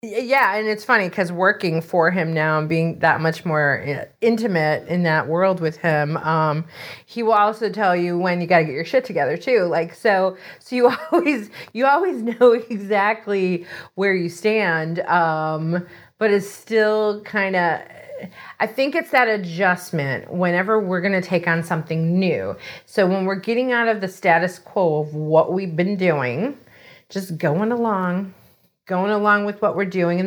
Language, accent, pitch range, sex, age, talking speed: English, American, 175-240 Hz, female, 30-49, 175 wpm